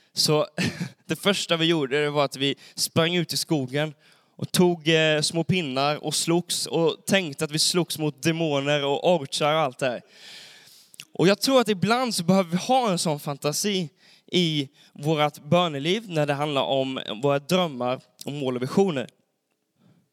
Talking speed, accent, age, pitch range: 165 wpm, native, 20-39, 140-180 Hz